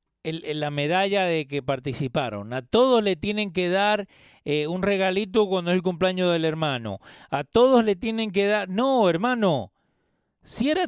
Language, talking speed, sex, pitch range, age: Spanish, 175 wpm, male, 135-220 Hz, 40-59